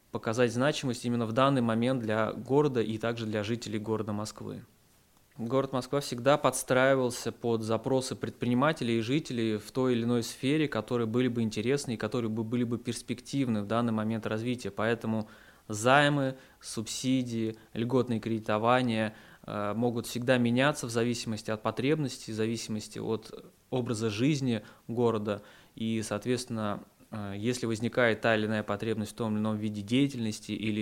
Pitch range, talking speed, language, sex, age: 110-130 Hz, 145 wpm, Russian, male, 20-39